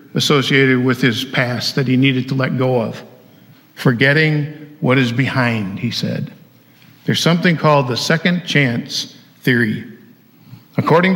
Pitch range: 125-145 Hz